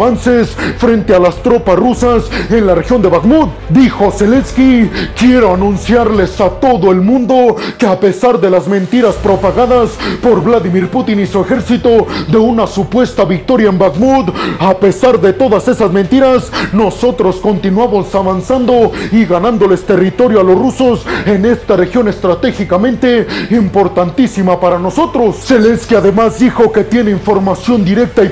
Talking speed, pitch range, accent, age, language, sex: 140 wpm, 195-245 Hz, Mexican, 30-49, Spanish, male